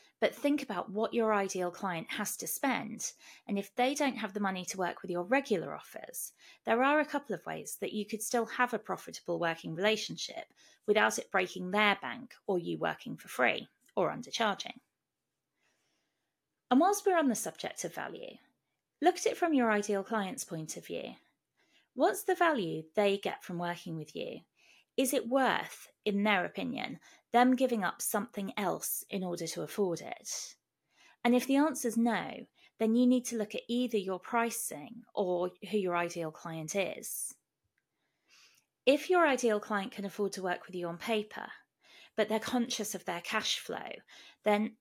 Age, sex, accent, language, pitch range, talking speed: 30-49, female, British, English, 195-260 Hz, 180 wpm